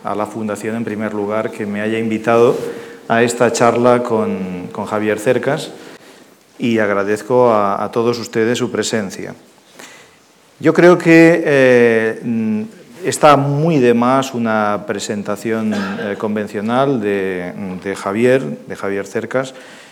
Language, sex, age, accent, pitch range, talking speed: Spanish, male, 40-59, Spanish, 105-135 Hz, 130 wpm